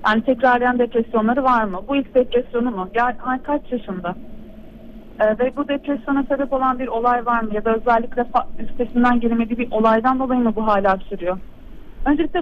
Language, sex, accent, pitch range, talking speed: Turkish, female, native, 230-280 Hz, 175 wpm